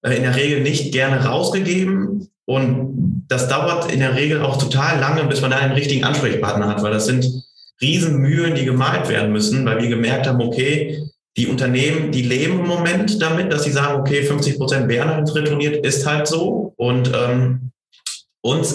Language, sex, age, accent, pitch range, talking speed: German, male, 30-49, German, 120-150 Hz, 180 wpm